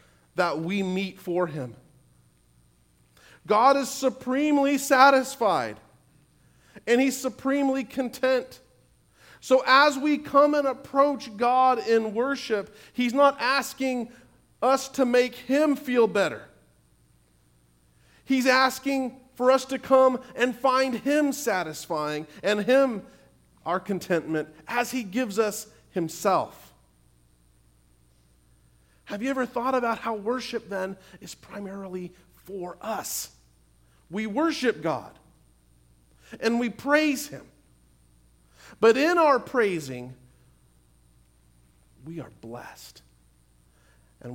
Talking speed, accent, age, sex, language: 105 wpm, American, 40-59, male, English